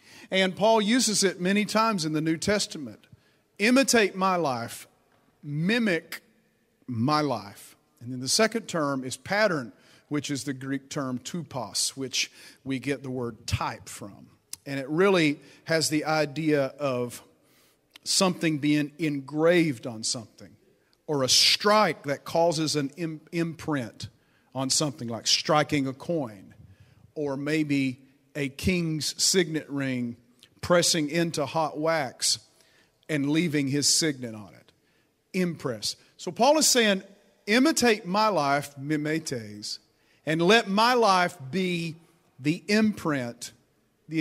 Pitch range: 135-190 Hz